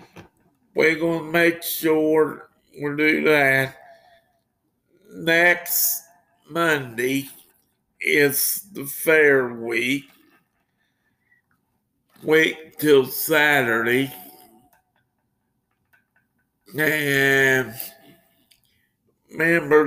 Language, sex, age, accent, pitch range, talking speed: English, male, 50-69, American, 130-165 Hz, 55 wpm